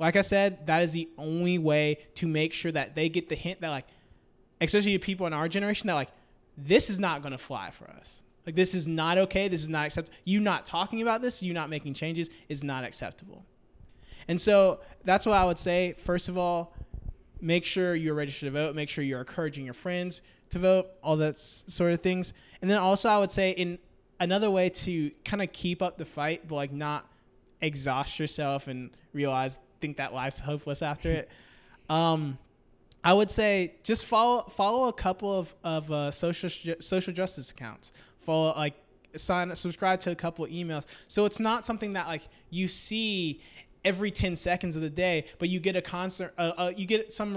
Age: 20-39